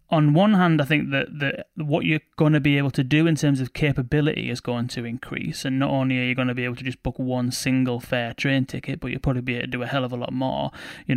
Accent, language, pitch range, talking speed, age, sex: British, English, 130-155 Hz, 290 wpm, 20-39, male